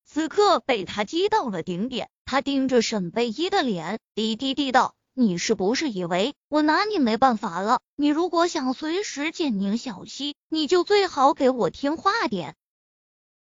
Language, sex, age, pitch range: Chinese, female, 20-39, 230-340 Hz